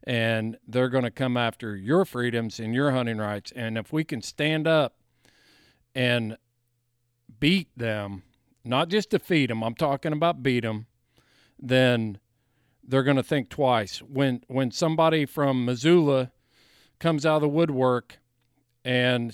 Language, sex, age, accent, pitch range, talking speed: English, male, 50-69, American, 120-145 Hz, 145 wpm